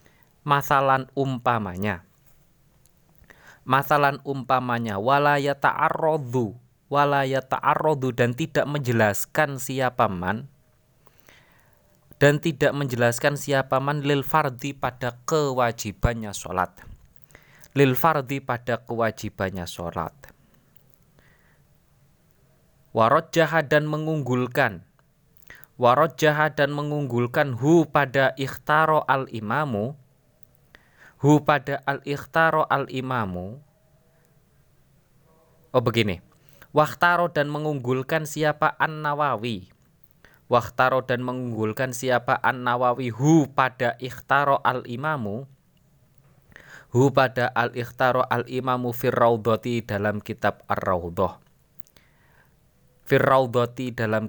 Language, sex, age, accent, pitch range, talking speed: Indonesian, male, 30-49, native, 120-145 Hz, 75 wpm